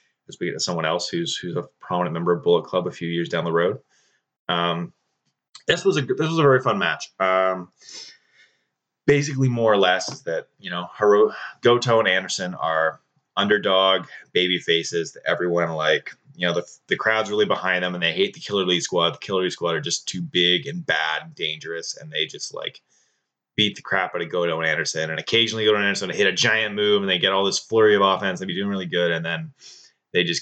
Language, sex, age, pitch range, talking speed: English, male, 30-49, 85-115 Hz, 225 wpm